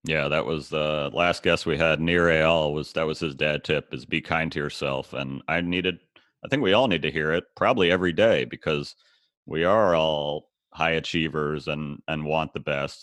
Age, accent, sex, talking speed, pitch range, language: 30-49, American, male, 210 wpm, 75-90 Hz, English